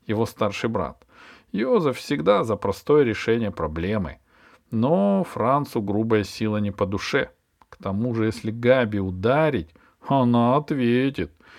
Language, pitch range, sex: Russian, 110-165 Hz, male